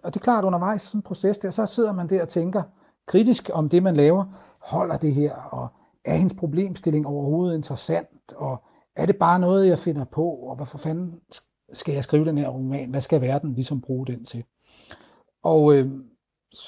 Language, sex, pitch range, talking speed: Danish, male, 145-185 Hz, 200 wpm